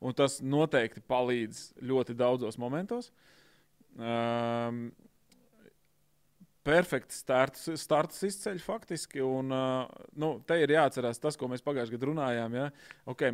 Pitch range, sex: 115-145 Hz, male